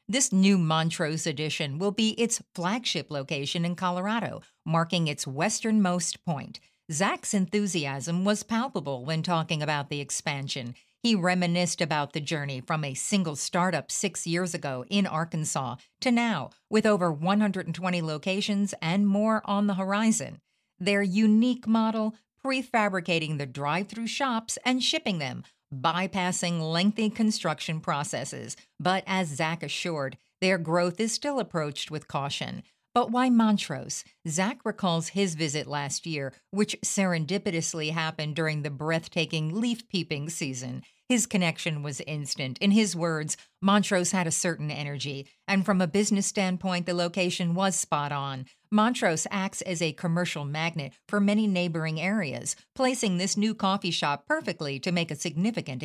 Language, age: English, 50-69